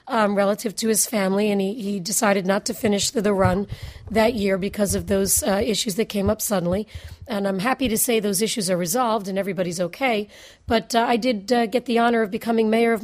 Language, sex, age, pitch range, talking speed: English, female, 40-59, 205-255 Hz, 230 wpm